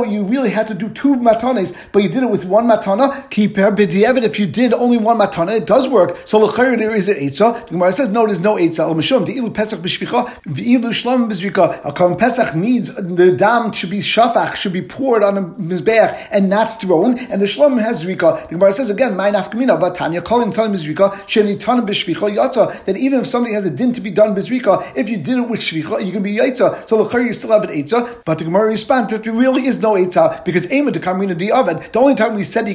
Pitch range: 200-240 Hz